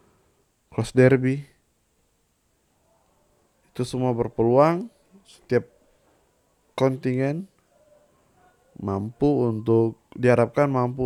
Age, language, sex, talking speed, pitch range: 20-39, Indonesian, male, 60 wpm, 110-140 Hz